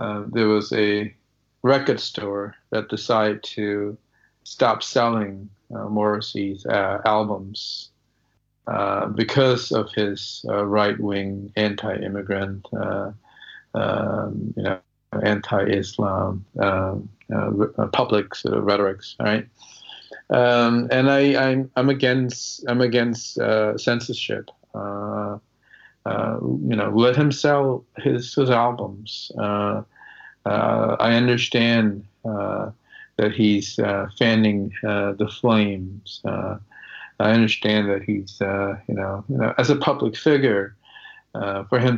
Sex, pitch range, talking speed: male, 100-120 Hz, 105 wpm